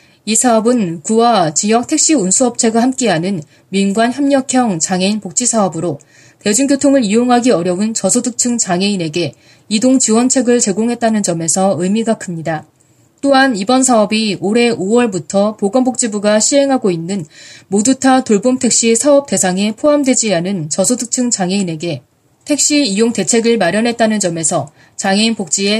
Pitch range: 180-240 Hz